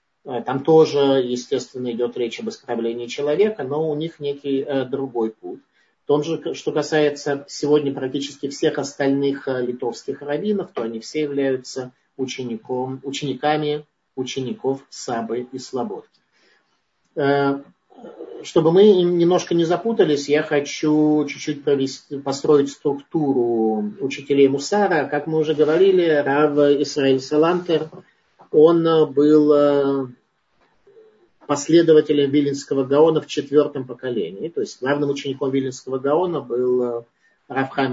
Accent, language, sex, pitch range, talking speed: native, Russian, male, 130-150 Hz, 110 wpm